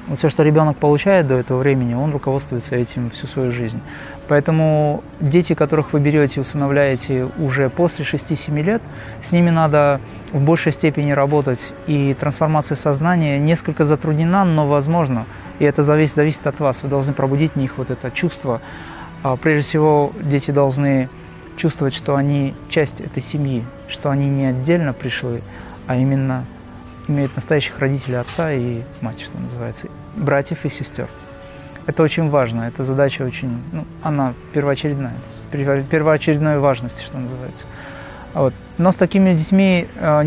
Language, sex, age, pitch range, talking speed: Russian, male, 20-39, 130-160 Hz, 150 wpm